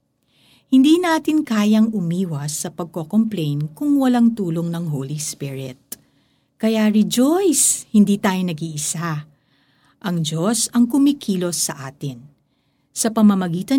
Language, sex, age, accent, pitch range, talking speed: Filipino, female, 50-69, native, 150-220 Hz, 110 wpm